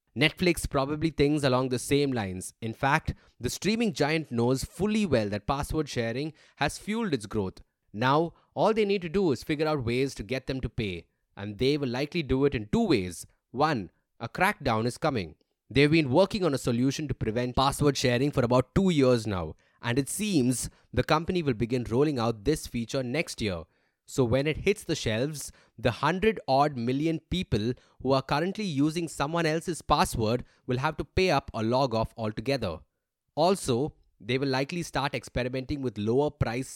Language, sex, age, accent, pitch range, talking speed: English, male, 20-39, Indian, 120-155 Hz, 185 wpm